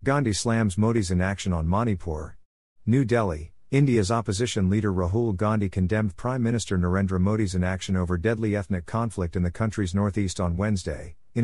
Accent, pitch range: American, 90-115 Hz